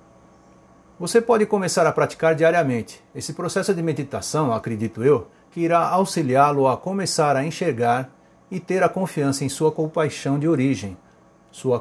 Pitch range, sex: 125-165 Hz, male